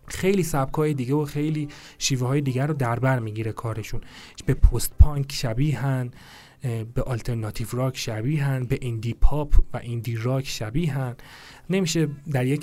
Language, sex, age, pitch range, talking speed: Persian, male, 30-49, 125-160 Hz, 155 wpm